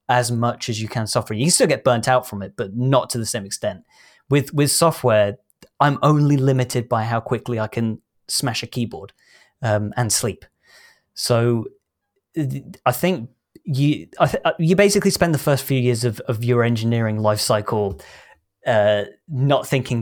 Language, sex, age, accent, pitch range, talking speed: English, male, 20-39, British, 110-130 Hz, 175 wpm